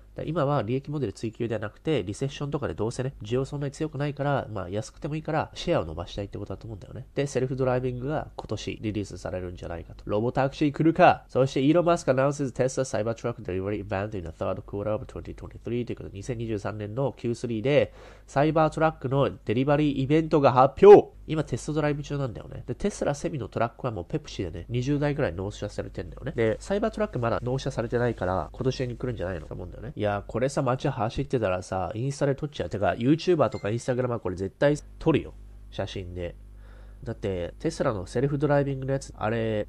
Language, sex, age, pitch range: Japanese, male, 20-39, 100-140 Hz